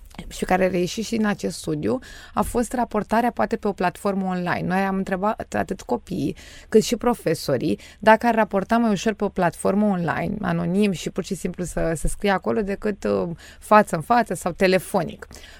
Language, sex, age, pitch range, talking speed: Romanian, female, 20-39, 170-205 Hz, 180 wpm